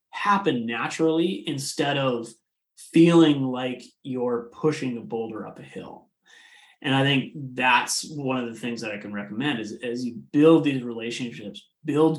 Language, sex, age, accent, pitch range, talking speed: English, male, 30-49, American, 120-150 Hz, 160 wpm